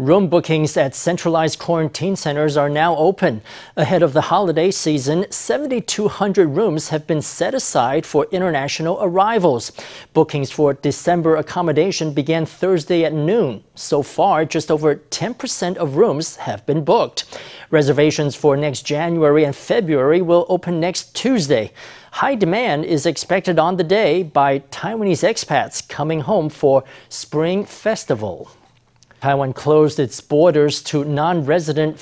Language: English